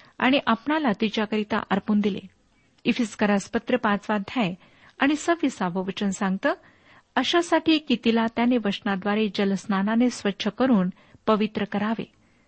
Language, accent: Marathi, native